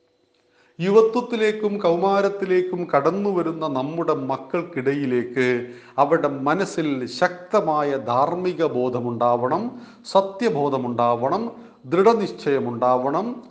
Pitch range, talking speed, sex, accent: 130-185 Hz, 60 wpm, male, native